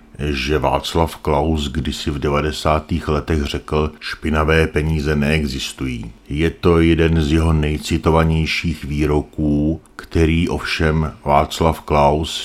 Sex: male